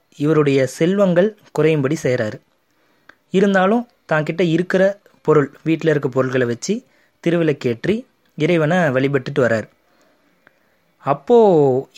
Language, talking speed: Tamil, 90 wpm